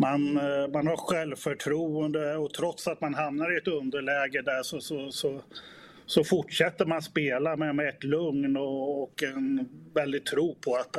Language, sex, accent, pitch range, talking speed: Swedish, male, native, 130-155 Hz, 170 wpm